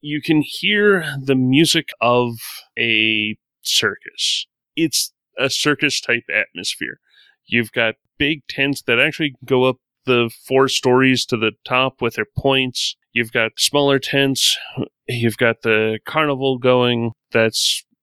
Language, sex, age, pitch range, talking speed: English, male, 30-49, 115-140 Hz, 130 wpm